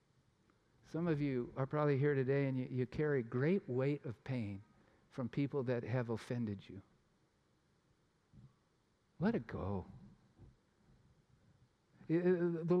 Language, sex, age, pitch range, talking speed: English, male, 50-69, 115-145 Hz, 115 wpm